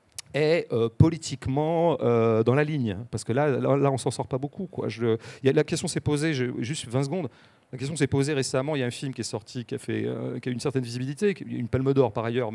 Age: 40-59